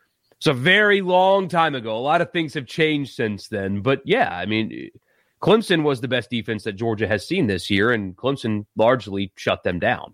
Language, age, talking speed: English, 30-49, 205 wpm